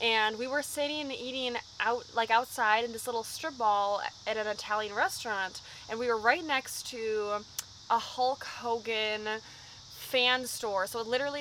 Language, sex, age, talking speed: English, female, 20-39, 170 wpm